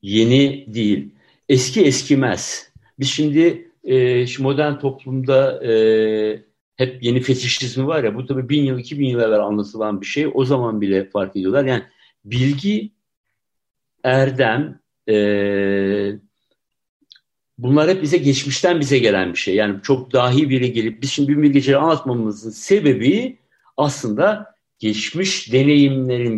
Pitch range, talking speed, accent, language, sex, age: 115-160 Hz, 130 wpm, native, Turkish, male, 60-79